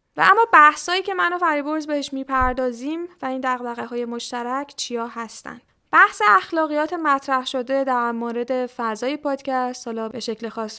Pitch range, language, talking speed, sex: 225-275 Hz, Persian, 160 wpm, female